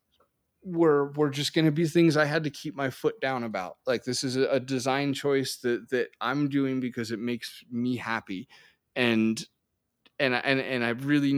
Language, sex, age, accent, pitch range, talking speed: English, male, 20-39, American, 125-160 Hz, 190 wpm